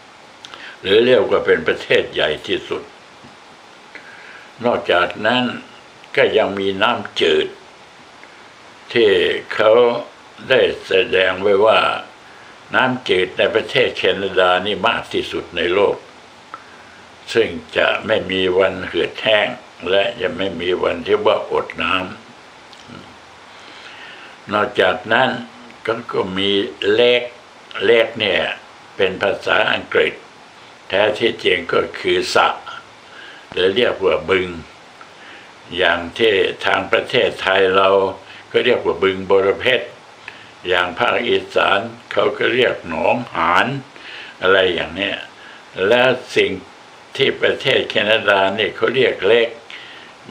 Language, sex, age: Thai, male, 60-79